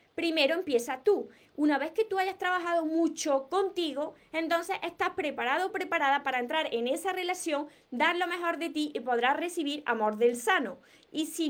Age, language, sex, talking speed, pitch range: 20-39, Spanish, female, 175 wpm, 260-335 Hz